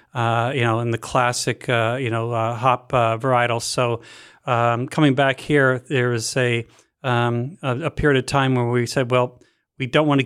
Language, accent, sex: English, American, male